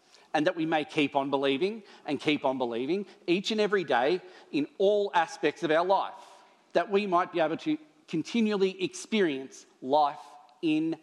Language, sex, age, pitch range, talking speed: English, male, 40-59, 140-175 Hz, 170 wpm